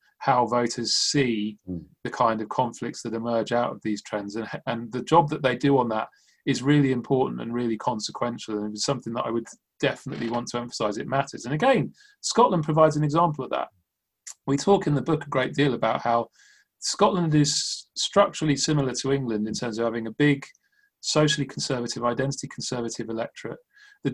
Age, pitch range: 30-49, 115-150 Hz